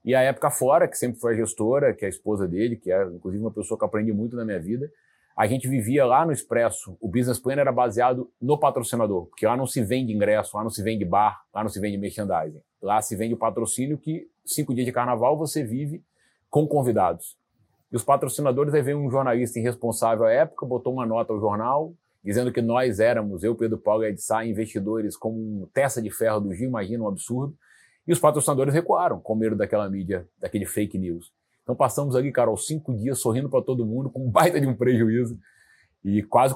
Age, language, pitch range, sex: 30-49, Portuguese, 110-145 Hz, male